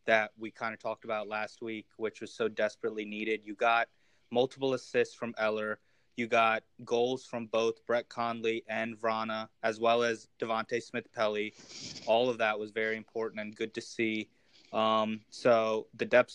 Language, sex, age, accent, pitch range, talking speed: English, male, 20-39, American, 105-115 Hz, 175 wpm